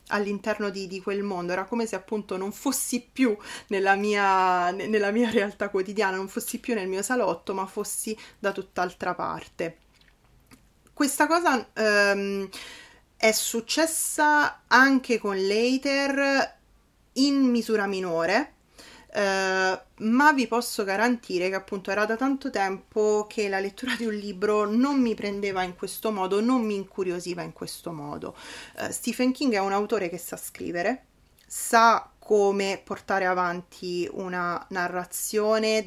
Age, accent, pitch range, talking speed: 20-39, native, 190-240 Hz, 135 wpm